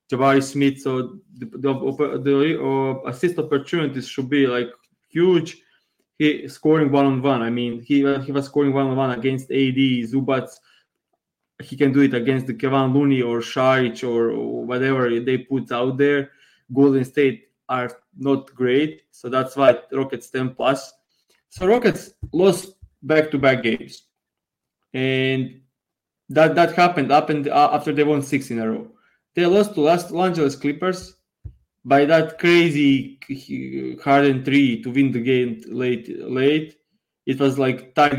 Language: English